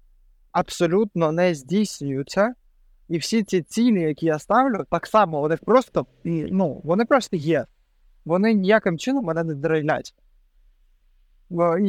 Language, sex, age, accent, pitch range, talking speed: Ukrainian, male, 20-39, native, 150-185 Hz, 120 wpm